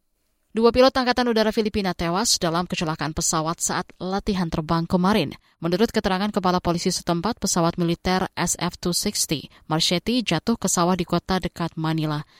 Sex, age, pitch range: female, 20-39, 165-205 Hz